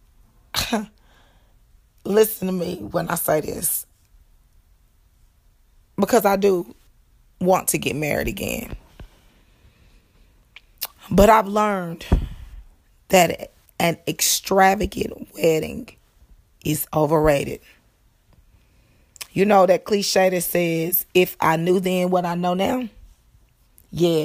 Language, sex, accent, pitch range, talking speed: English, female, American, 160-210 Hz, 95 wpm